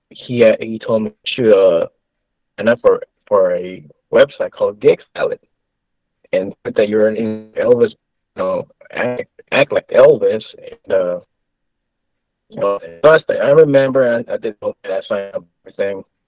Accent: American